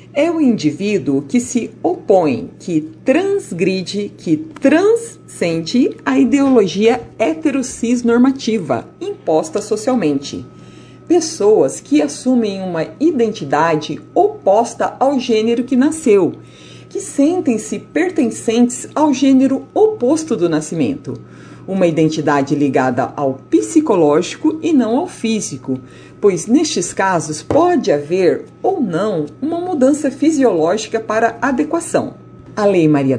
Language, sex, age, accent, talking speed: Portuguese, female, 50-69, Brazilian, 105 wpm